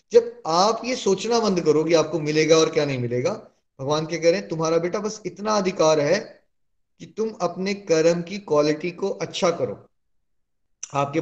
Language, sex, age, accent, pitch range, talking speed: Hindi, male, 20-39, native, 150-185 Hz, 170 wpm